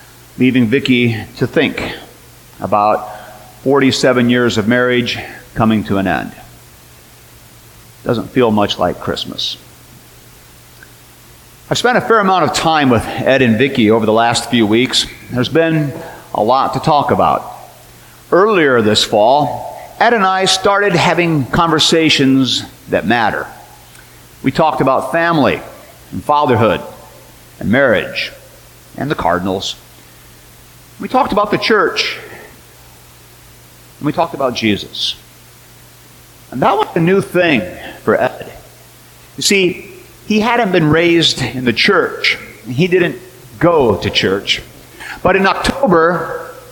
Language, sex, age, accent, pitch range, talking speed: English, male, 50-69, American, 105-175 Hz, 125 wpm